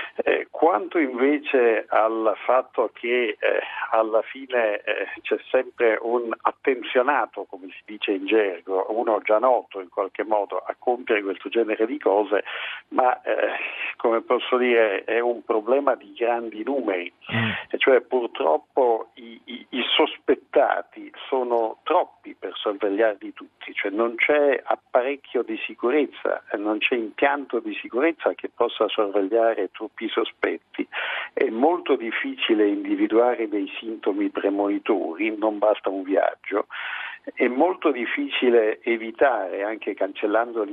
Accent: native